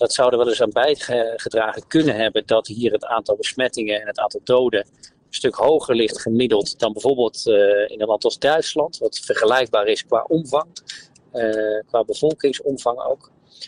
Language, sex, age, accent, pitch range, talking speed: Dutch, male, 40-59, Dutch, 120-175 Hz, 175 wpm